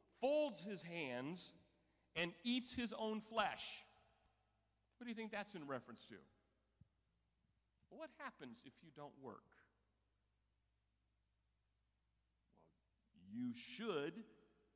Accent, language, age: American, English, 50-69